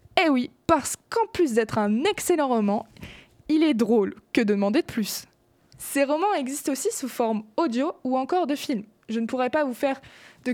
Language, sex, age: French, female, 20-39